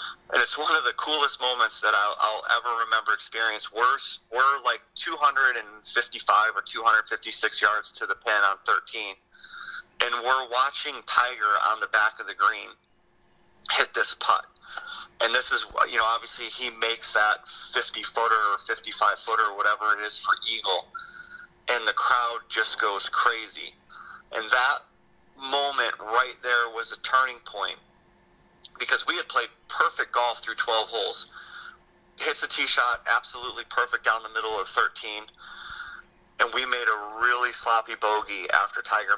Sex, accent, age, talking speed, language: male, American, 30-49, 155 wpm, English